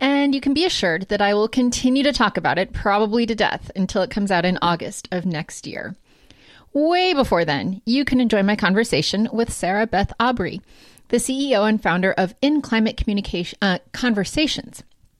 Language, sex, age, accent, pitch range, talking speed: English, female, 30-49, American, 185-240 Hz, 180 wpm